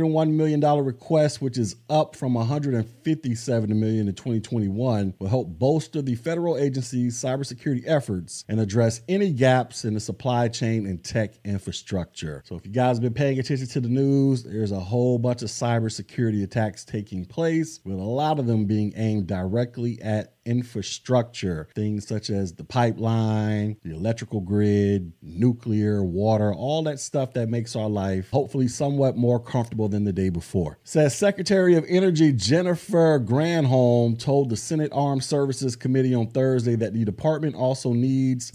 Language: English